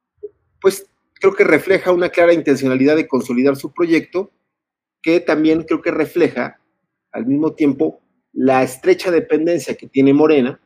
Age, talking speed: 40-59, 140 wpm